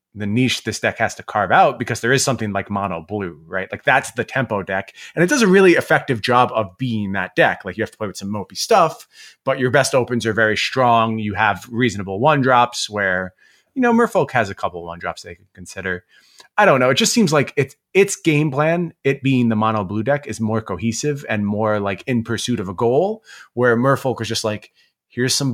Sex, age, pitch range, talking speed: male, 30-49, 100-140 Hz, 235 wpm